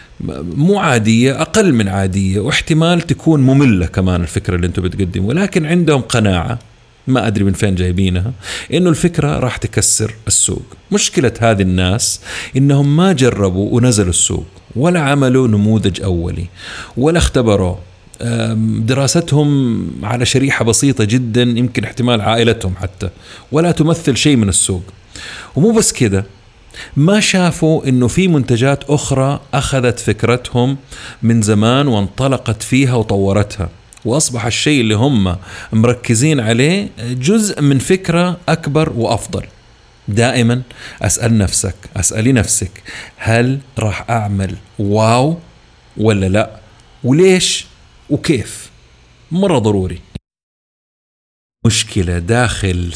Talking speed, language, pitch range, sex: 110 wpm, Arabic, 100-140 Hz, male